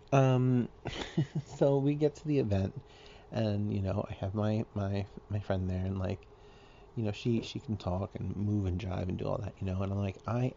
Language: English